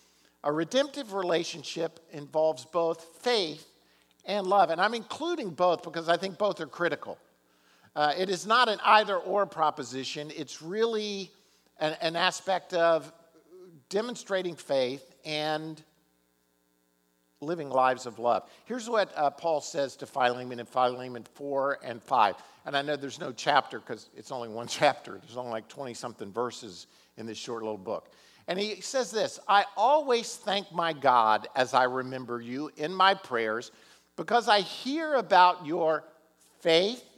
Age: 50-69